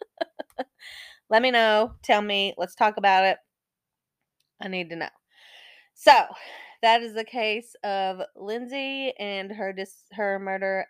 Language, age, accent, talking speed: English, 20-39, American, 140 wpm